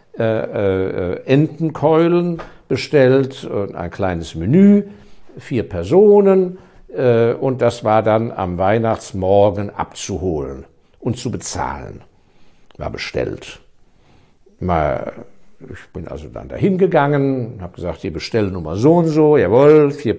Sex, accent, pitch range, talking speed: male, German, 100-160 Hz, 115 wpm